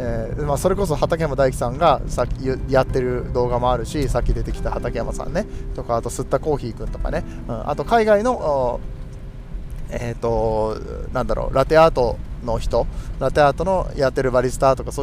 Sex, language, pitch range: male, Japanese, 120-155 Hz